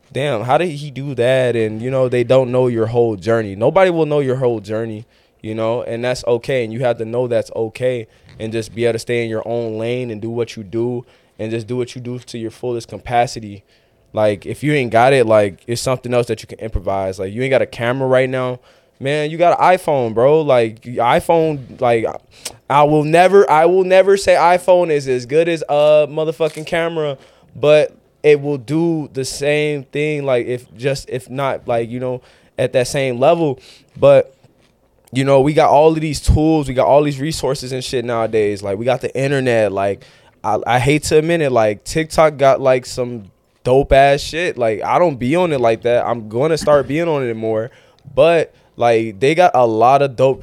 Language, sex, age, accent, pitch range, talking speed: English, male, 20-39, American, 115-150 Hz, 215 wpm